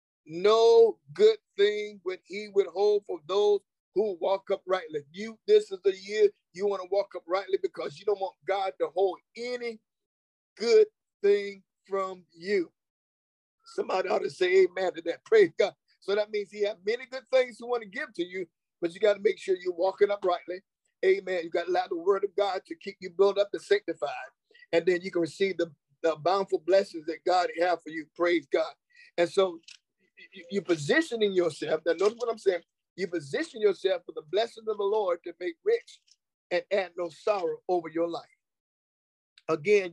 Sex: male